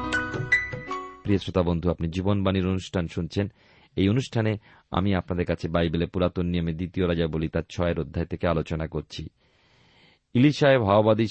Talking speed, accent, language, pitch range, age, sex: 135 wpm, native, Bengali, 85-110 Hz, 40-59, male